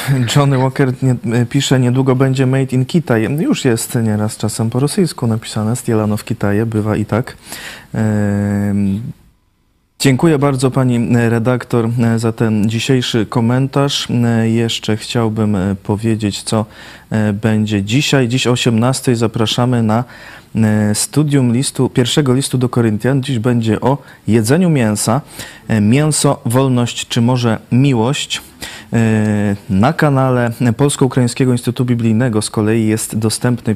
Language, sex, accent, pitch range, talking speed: Polish, male, native, 110-130 Hz, 120 wpm